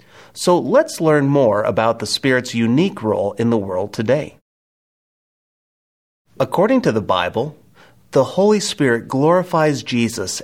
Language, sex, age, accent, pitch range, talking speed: English, male, 30-49, American, 115-175 Hz, 125 wpm